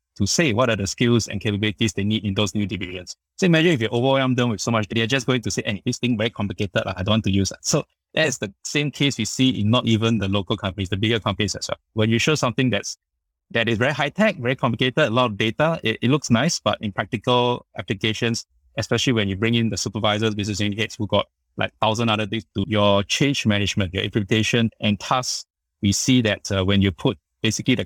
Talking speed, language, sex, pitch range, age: 245 wpm, English, male, 100-120 Hz, 20-39